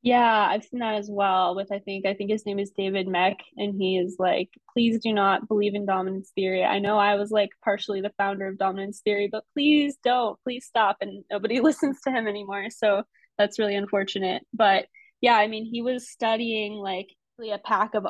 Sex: female